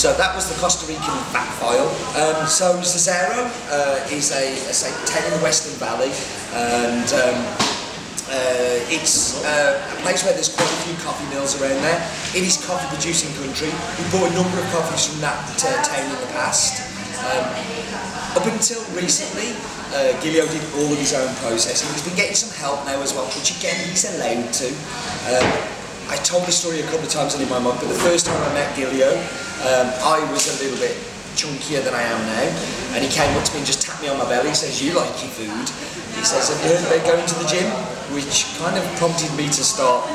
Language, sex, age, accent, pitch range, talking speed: English, male, 30-49, British, 140-180 Hz, 210 wpm